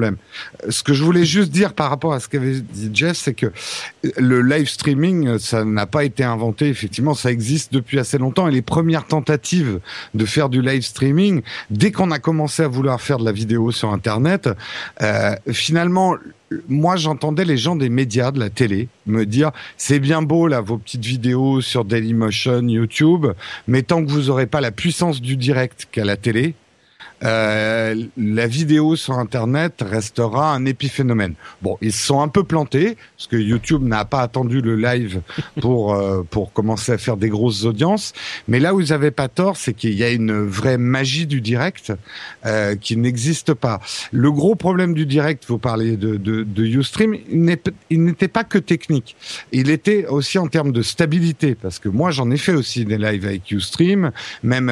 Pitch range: 115-155 Hz